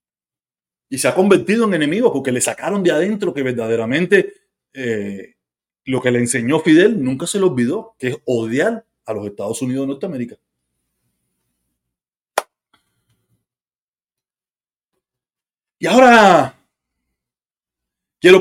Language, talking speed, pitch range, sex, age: Spanish, 115 wpm, 115-175 Hz, male, 40-59